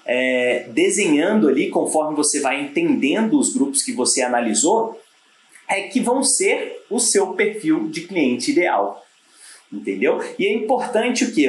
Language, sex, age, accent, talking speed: Portuguese, male, 30-49, Brazilian, 145 wpm